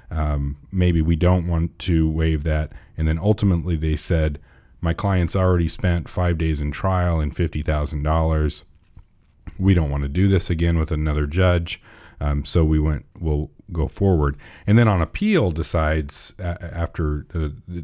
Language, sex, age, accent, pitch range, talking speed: English, male, 40-59, American, 80-95 Hz, 160 wpm